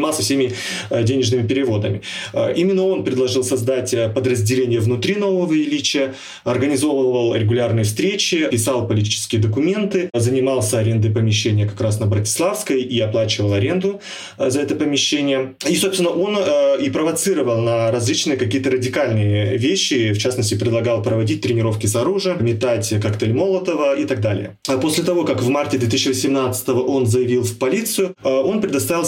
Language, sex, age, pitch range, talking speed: Russian, male, 20-39, 115-165 Hz, 135 wpm